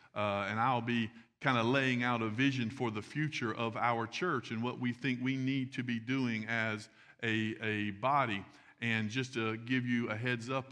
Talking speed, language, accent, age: 205 wpm, English, American, 50-69